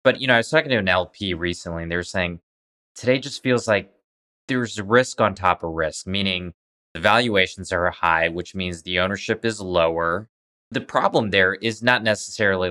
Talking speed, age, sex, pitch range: 200 wpm, 20-39, male, 90-115 Hz